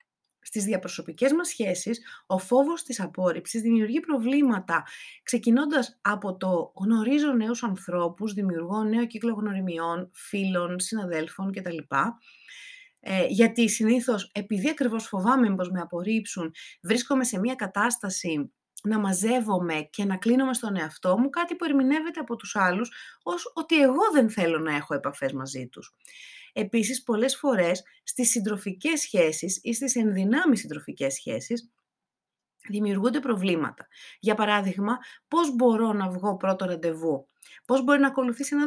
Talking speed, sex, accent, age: 130 wpm, female, native, 30-49